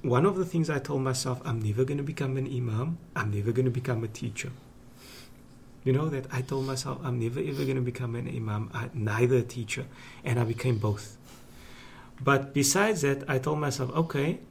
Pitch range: 115-135 Hz